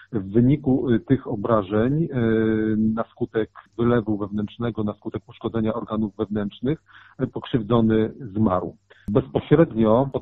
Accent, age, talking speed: native, 40-59, 100 wpm